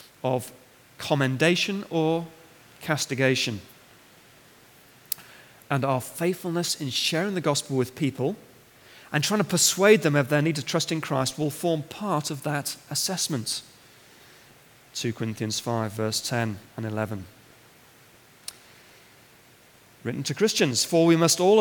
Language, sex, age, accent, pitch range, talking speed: English, male, 40-59, British, 125-165 Hz, 125 wpm